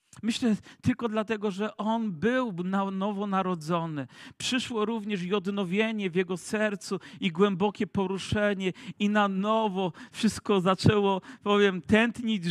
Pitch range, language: 155-205 Hz, Polish